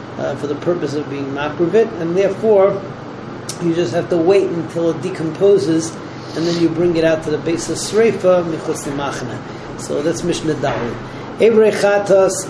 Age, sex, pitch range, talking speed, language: 40-59, male, 160-195 Hz, 170 wpm, English